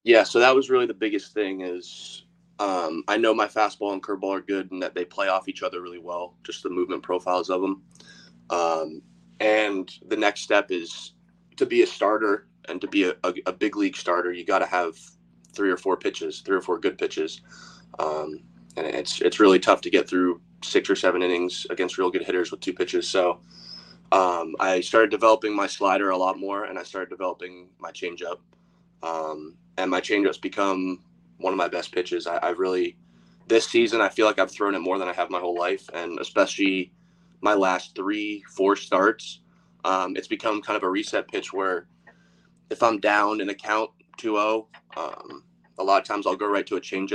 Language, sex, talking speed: English, male, 210 wpm